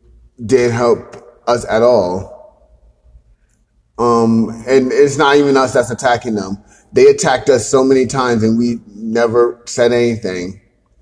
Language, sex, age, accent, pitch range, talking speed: English, male, 30-49, American, 115-130 Hz, 135 wpm